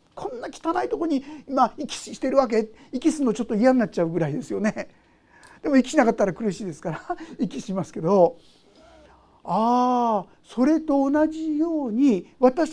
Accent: native